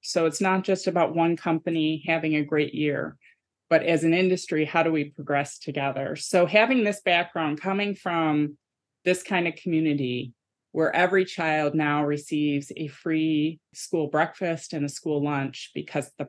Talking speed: 165 wpm